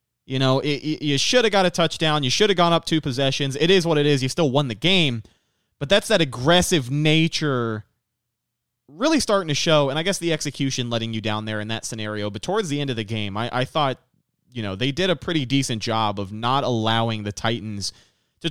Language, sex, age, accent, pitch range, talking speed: English, male, 30-49, American, 120-160 Hz, 225 wpm